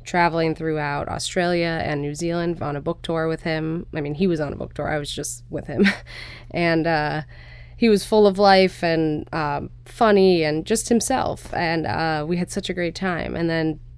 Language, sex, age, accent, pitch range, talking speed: English, female, 20-39, American, 150-185 Hz, 205 wpm